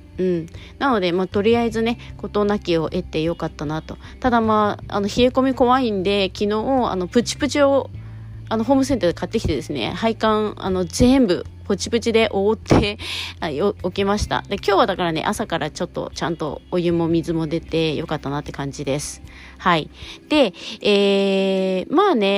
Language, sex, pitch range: Japanese, female, 170-230 Hz